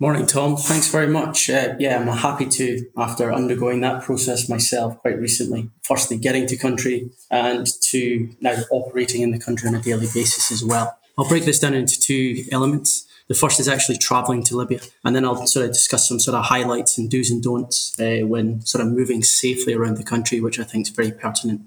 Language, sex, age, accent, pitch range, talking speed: English, male, 20-39, British, 120-135 Hz, 215 wpm